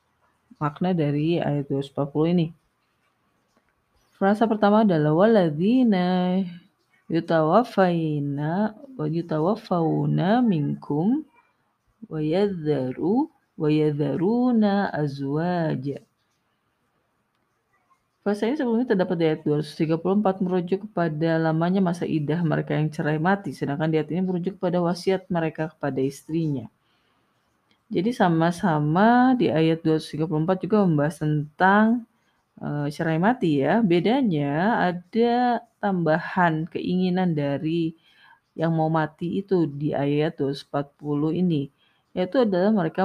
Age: 30-49